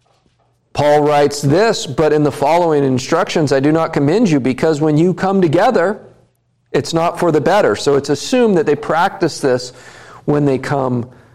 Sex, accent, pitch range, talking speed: male, American, 135-170 Hz, 175 wpm